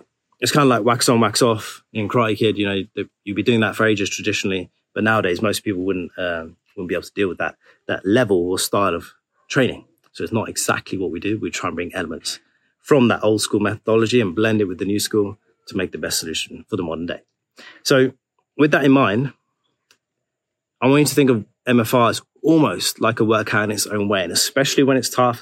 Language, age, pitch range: English, 30-49, 105-125 Hz